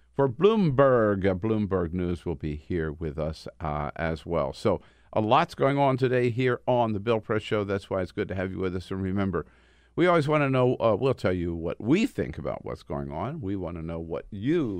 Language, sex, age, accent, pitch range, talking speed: English, male, 50-69, American, 85-125 Hz, 230 wpm